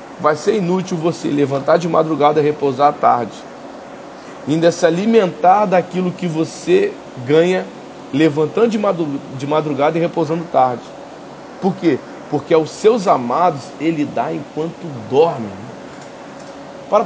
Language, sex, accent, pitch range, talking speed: Portuguese, male, Brazilian, 145-185 Hz, 125 wpm